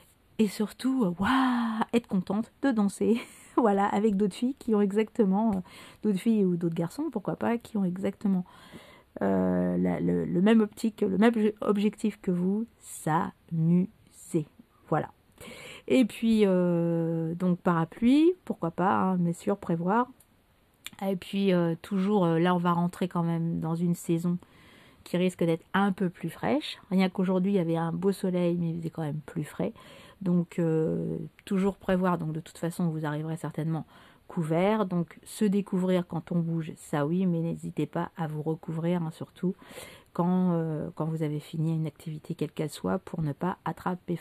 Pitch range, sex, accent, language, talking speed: 165-210 Hz, female, French, French, 170 wpm